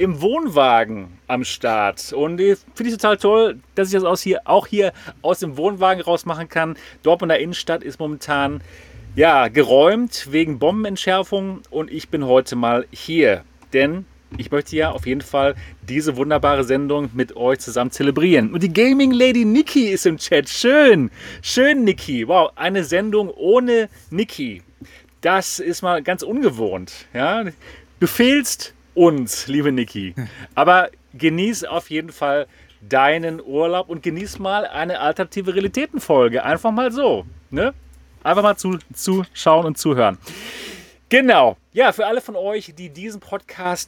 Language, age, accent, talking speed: German, 40-59, German, 150 wpm